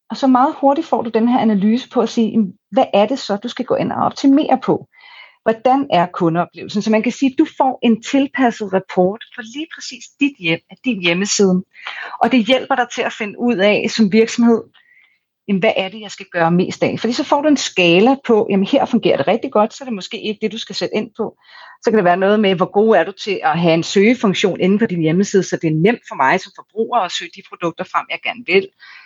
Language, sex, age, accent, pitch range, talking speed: Danish, female, 40-59, native, 185-245 Hz, 260 wpm